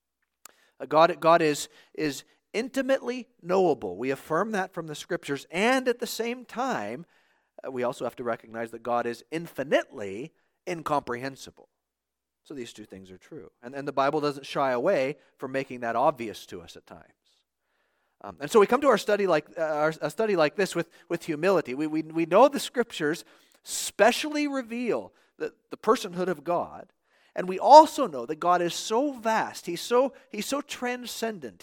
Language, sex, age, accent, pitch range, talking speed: English, male, 40-59, American, 135-210 Hz, 175 wpm